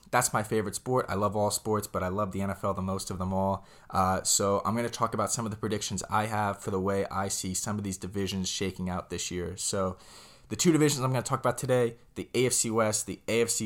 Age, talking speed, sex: 20-39, 260 wpm, male